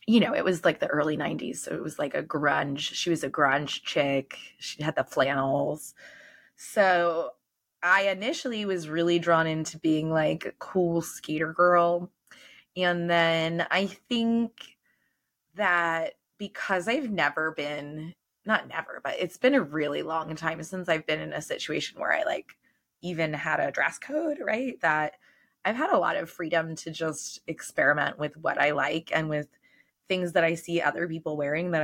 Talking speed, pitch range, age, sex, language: 175 wpm, 150-185 Hz, 20-39, female, English